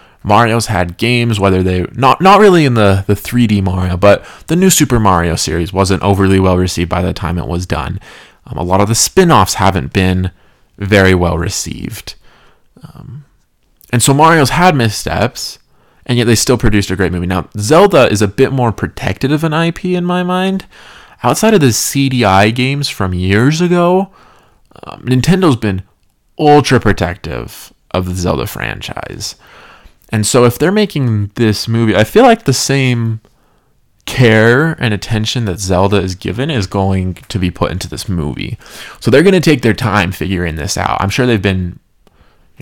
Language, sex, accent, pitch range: English, male, American, 95-130 Hz